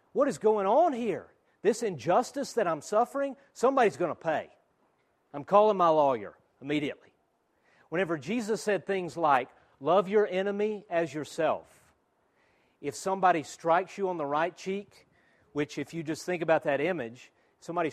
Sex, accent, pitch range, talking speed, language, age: male, American, 160-220 Hz, 155 wpm, English, 40-59